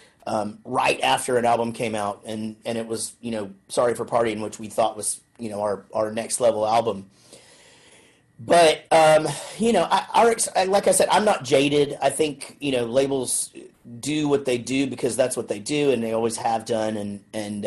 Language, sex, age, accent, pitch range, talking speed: English, male, 30-49, American, 110-145 Hz, 205 wpm